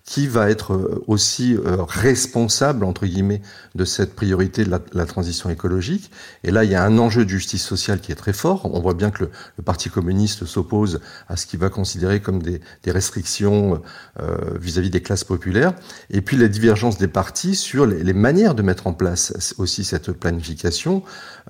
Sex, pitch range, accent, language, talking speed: male, 90-110 Hz, French, French, 195 wpm